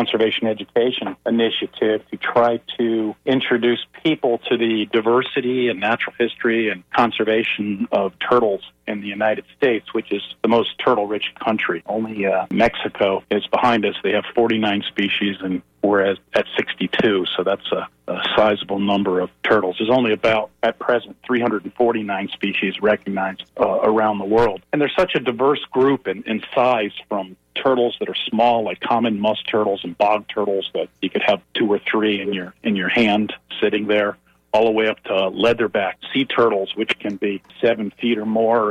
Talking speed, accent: 180 wpm, American